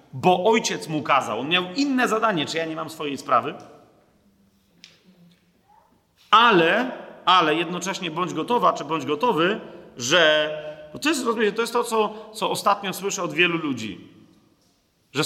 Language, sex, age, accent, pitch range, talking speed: Polish, male, 40-59, native, 155-220 Hz, 140 wpm